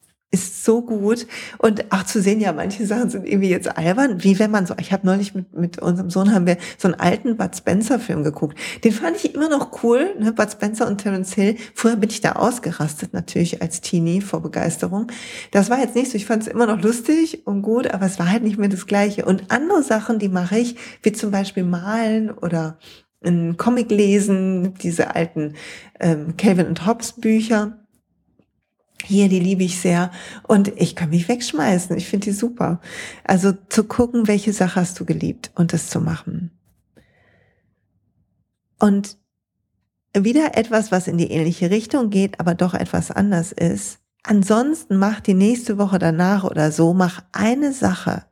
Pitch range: 175-220 Hz